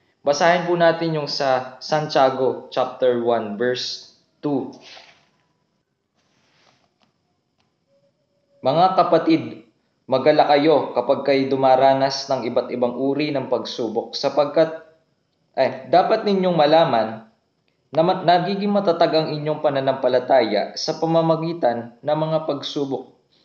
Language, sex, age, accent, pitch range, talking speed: English, male, 20-39, Filipino, 130-165 Hz, 95 wpm